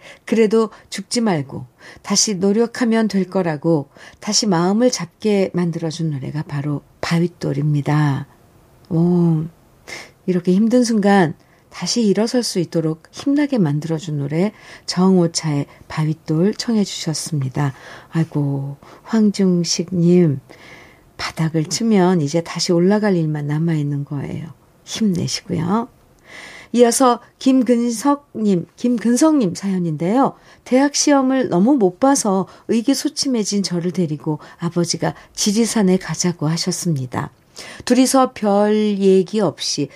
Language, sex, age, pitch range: Korean, female, 50-69, 160-215 Hz